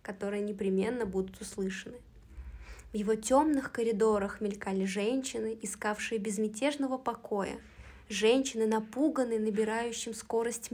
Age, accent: 20-39, native